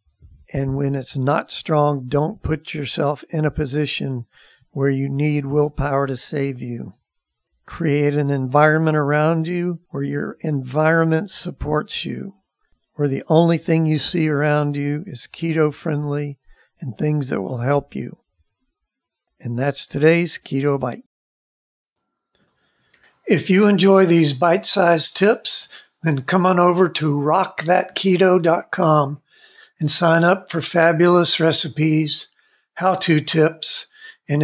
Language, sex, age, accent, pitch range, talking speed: English, male, 50-69, American, 145-175 Hz, 120 wpm